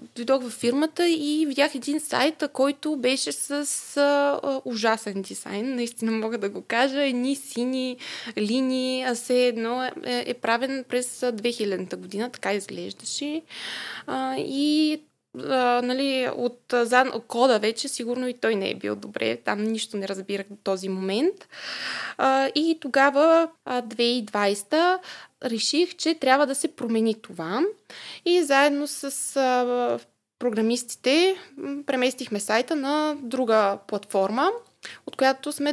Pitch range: 225-285 Hz